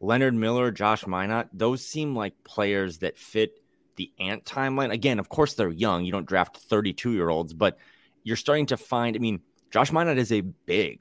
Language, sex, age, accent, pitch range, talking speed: English, male, 30-49, American, 90-110 Hz, 185 wpm